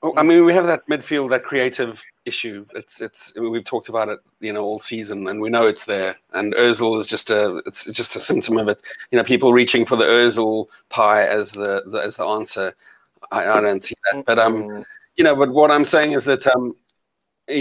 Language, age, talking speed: English, 30-49, 235 wpm